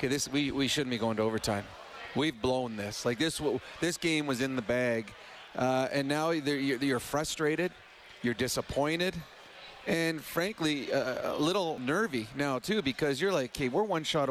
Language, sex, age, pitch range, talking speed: English, male, 30-49, 130-165 Hz, 175 wpm